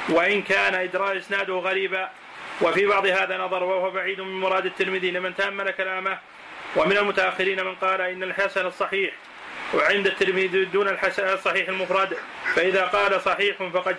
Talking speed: 145 wpm